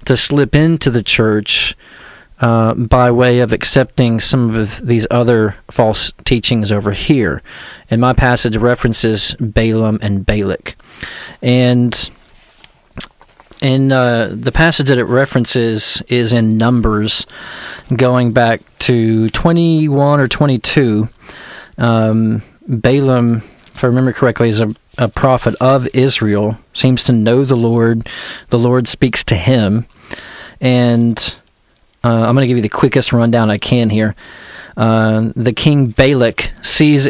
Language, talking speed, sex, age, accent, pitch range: English, 135 wpm, male, 40-59, American, 115-130 Hz